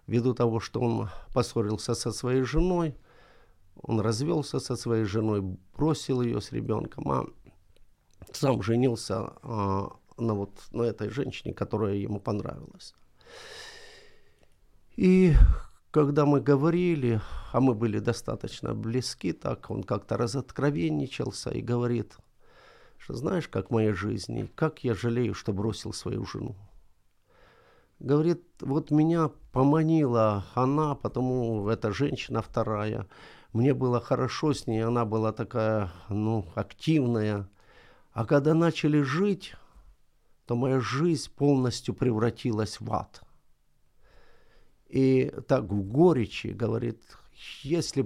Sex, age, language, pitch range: male, 50-69, Ukrainian, 110-140 Hz